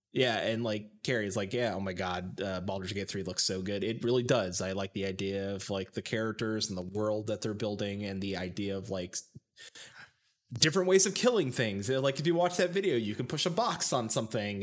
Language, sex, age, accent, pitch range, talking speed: English, male, 20-39, American, 105-130 Hz, 230 wpm